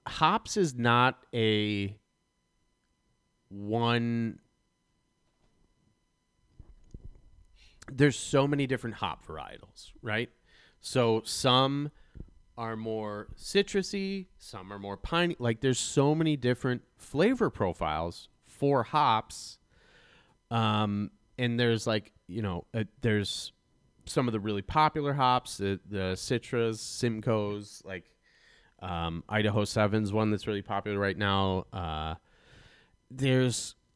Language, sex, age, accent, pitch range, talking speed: English, male, 30-49, American, 95-120 Hz, 105 wpm